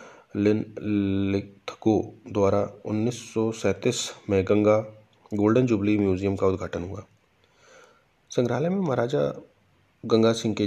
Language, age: Hindi, 30-49